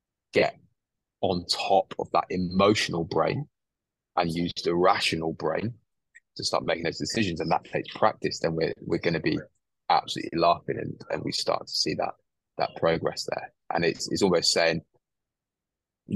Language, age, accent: English, 20-39, British